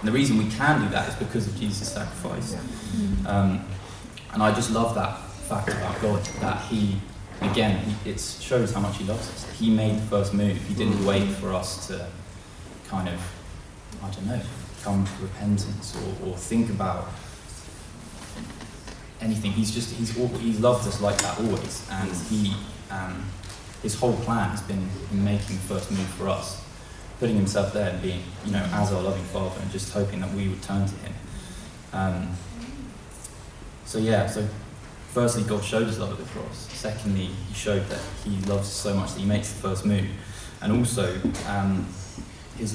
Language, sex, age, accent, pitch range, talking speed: English, male, 20-39, British, 95-110 Hz, 180 wpm